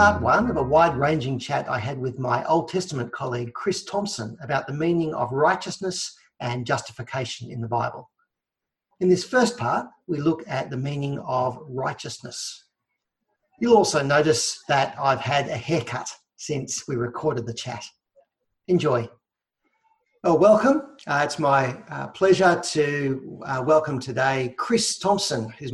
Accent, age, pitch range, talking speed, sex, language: Australian, 50-69, 125-170 Hz, 150 wpm, male, English